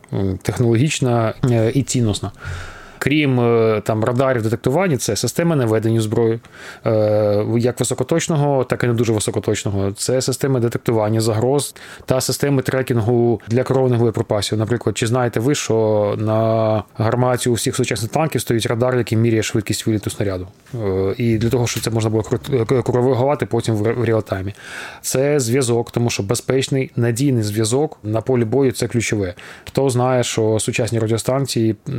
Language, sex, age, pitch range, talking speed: Ukrainian, male, 20-39, 110-130 Hz, 140 wpm